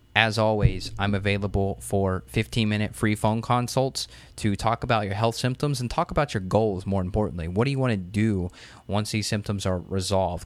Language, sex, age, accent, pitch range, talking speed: English, male, 20-39, American, 95-115 Hz, 190 wpm